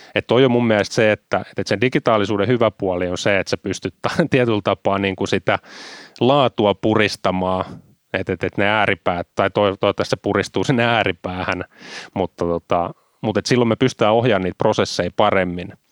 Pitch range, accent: 90-105 Hz, native